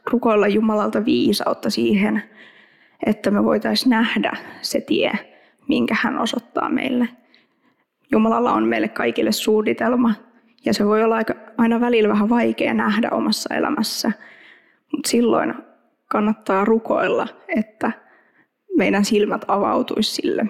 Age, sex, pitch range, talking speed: 20-39, female, 215-260 Hz, 115 wpm